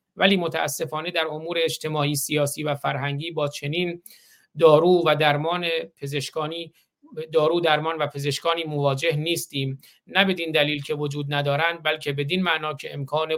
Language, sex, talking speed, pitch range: Persian, male, 140 wpm, 145-170 Hz